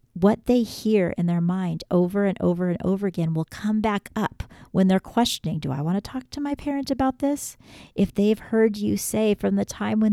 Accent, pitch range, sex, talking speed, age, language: American, 175-210 Hz, female, 225 wpm, 40-59, English